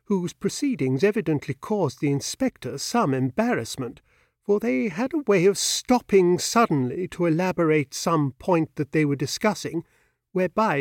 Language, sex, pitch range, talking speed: English, male, 140-195 Hz, 140 wpm